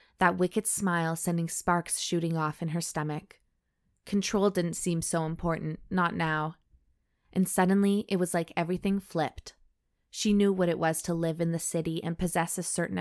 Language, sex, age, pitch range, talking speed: English, female, 20-39, 165-195 Hz, 175 wpm